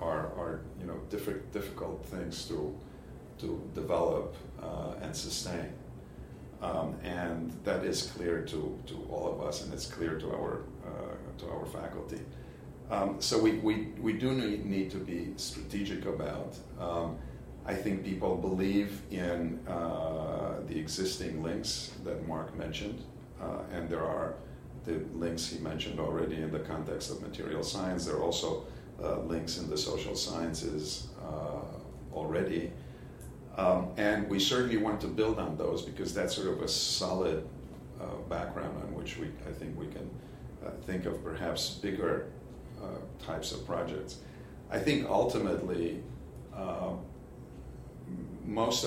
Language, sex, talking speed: English, male, 150 wpm